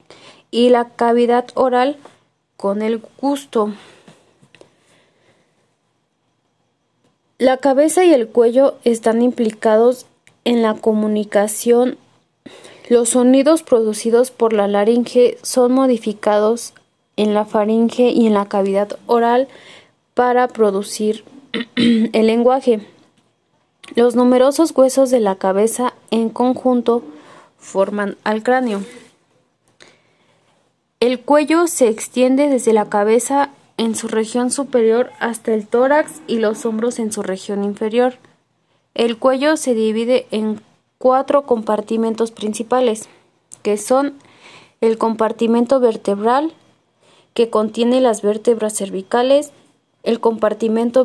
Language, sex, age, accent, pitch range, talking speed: Spanish, female, 20-39, Mexican, 220-255 Hz, 105 wpm